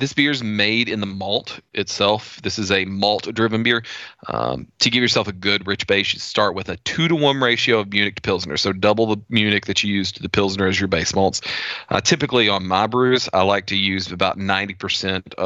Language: English